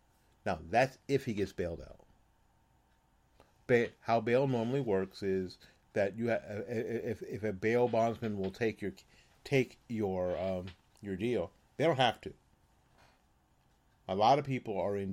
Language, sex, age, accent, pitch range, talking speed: English, male, 40-59, American, 95-110 Hz, 155 wpm